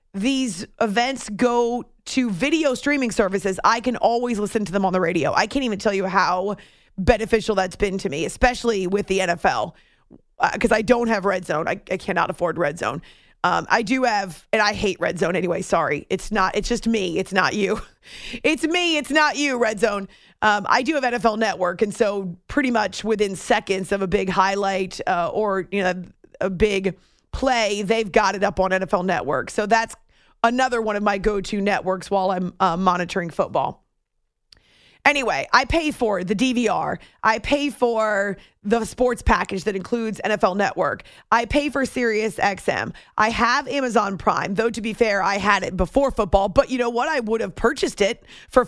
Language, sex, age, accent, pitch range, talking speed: English, female, 30-49, American, 195-240 Hz, 195 wpm